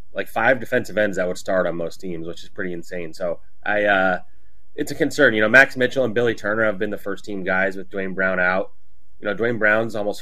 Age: 30-49